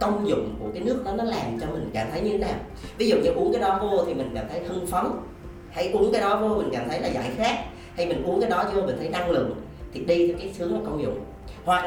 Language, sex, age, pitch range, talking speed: Vietnamese, female, 20-39, 125-180 Hz, 295 wpm